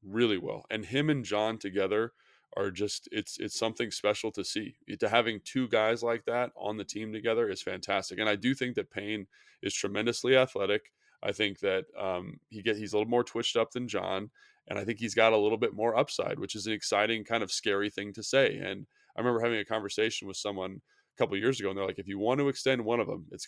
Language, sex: English, male